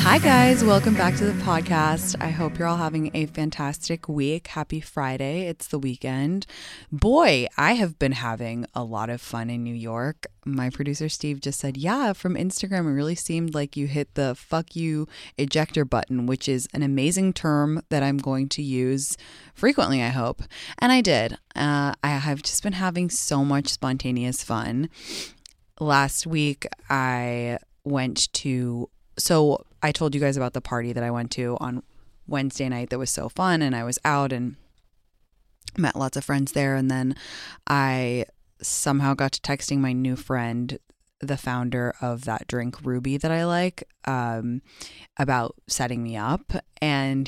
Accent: American